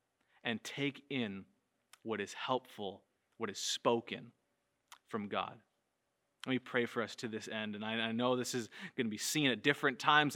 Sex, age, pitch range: male, 20-39, 110-130 Hz